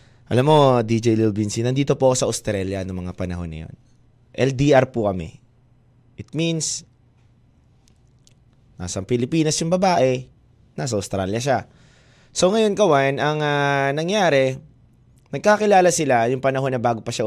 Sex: male